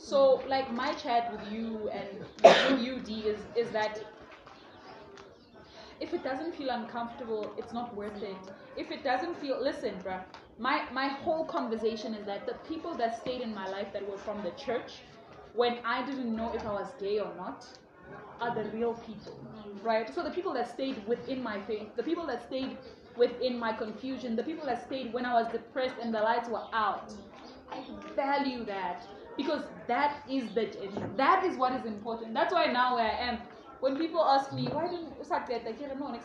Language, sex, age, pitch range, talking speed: English, female, 20-39, 220-280 Hz, 195 wpm